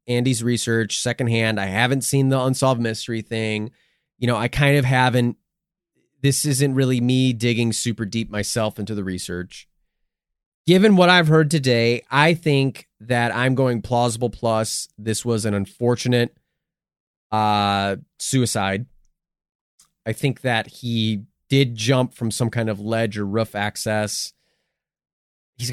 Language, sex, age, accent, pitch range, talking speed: English, male, 30-49, American, 110-155 Hz, 140 wpm